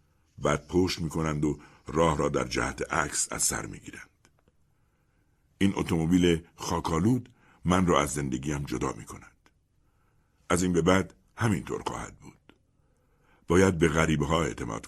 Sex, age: male, 60-79